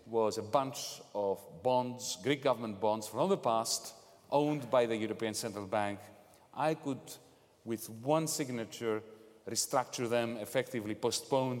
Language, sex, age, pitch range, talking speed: English, male, 40-59, 110-145 Hz, 135 wpm